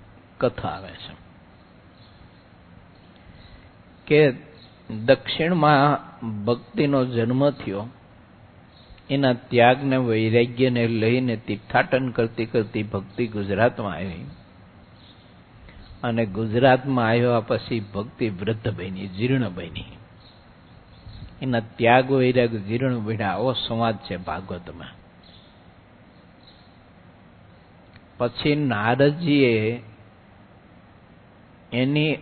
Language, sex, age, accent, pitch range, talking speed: English, male, 50-69, Indian, 100-125 Hz, 45 wpm